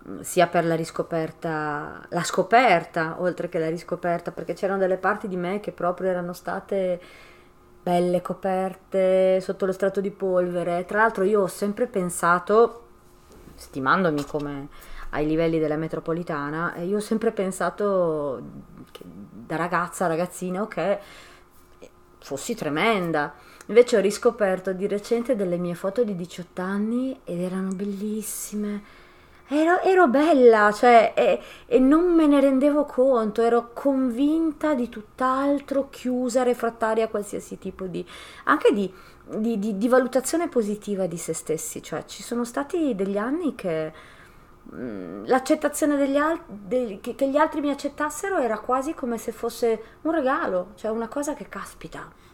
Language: Italian